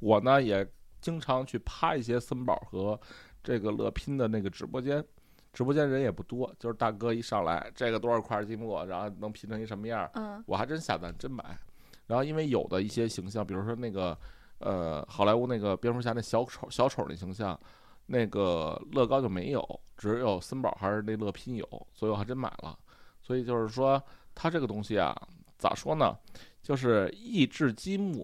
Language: Chinese